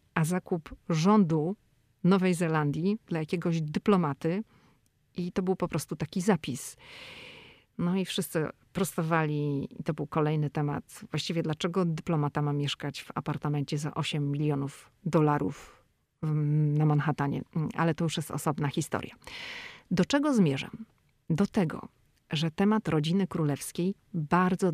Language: Polish